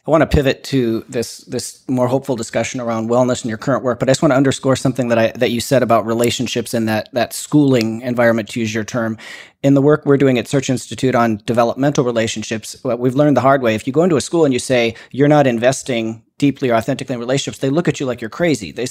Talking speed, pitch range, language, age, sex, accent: 255 wpm, 120-150 Hz, English, 40-59, male, American